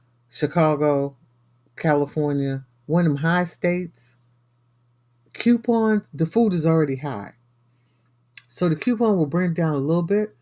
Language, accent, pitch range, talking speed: English, American, 125-175 Hz, 130 wpm